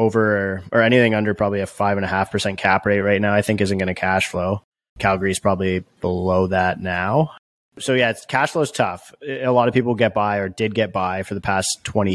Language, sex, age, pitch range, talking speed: English, male, 20-39, 95-110 Hz, 235 wpm